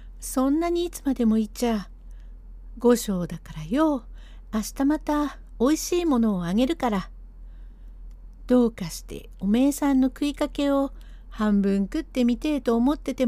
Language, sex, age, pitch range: Japanese, female, 60-79, 175-260 Hz